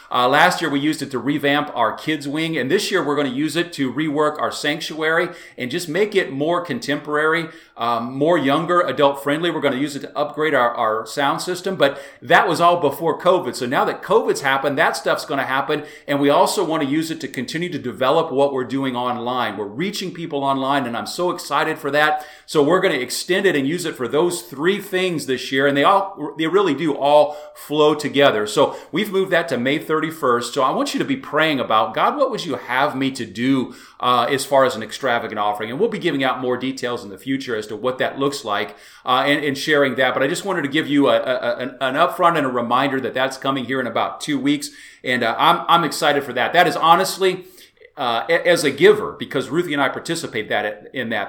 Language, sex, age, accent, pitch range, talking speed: English, male, 40-59, American, 135-170 Hz, 240 wpm